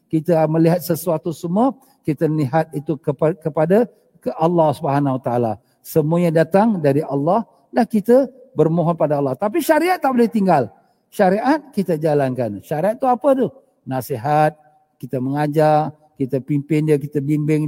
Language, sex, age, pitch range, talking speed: Malay, male, 50-69, 150-210 Hz, 145 wpm